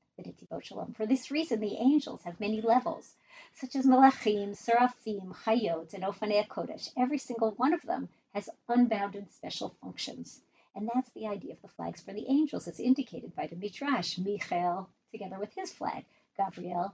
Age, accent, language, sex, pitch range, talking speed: 50-69, American, English, female, 205-260 Hz, 165 wpm